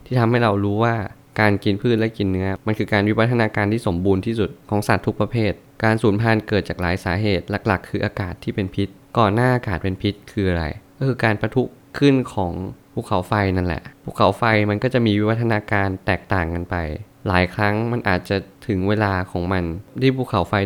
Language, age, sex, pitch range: Thai, 20-39, male, 95-115 Hz